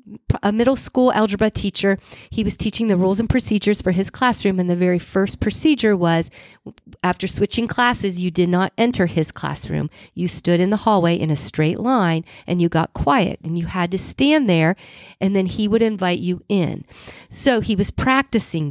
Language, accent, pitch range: English, American, 175-225 Hz